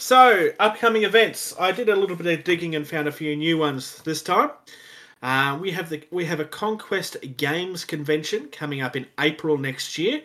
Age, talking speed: 30-49, 200 wpm